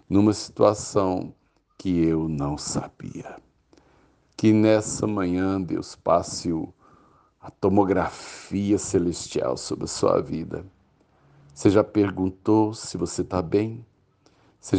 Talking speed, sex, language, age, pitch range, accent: 105 wpm, male, Portuguese, 60-79, 85-105 Hz, Brazilian